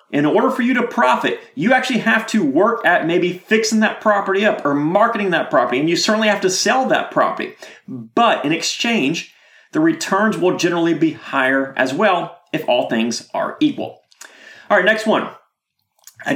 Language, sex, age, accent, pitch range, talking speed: English, male, 30-49, American, 165-230 Hz, 185 wpm